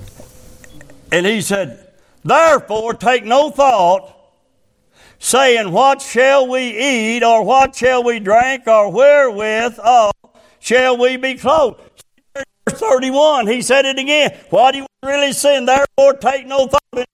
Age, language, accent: 60-79, English, American